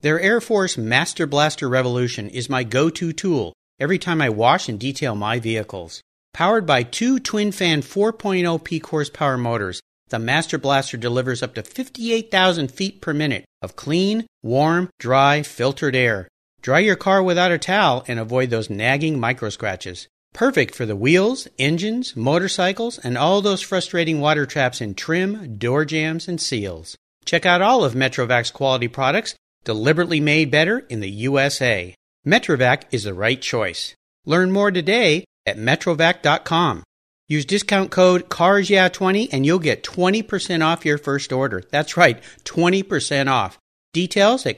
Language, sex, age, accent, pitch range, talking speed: English, male, 40-59, American, 125-190 Hz, 150 wpm